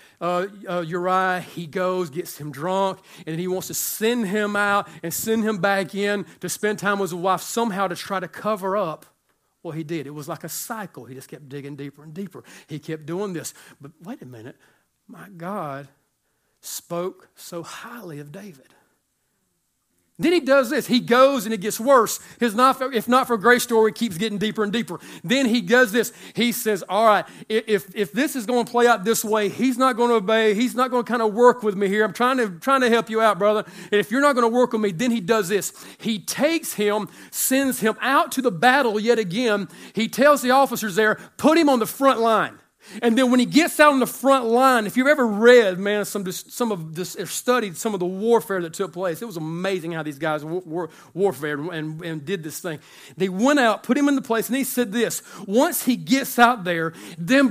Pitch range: 185-245 Hz